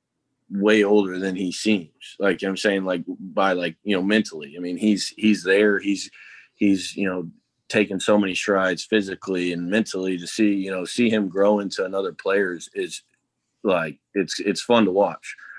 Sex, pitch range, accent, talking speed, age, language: male, 90-105 Hz, American, 195 wpm, 20-39, English